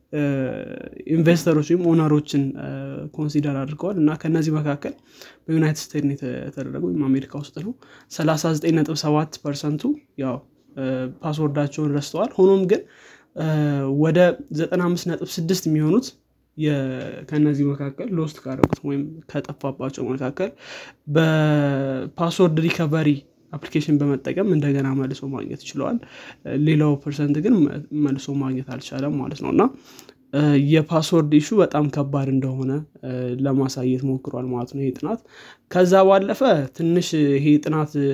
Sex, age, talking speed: male, 20-39, 90 wpm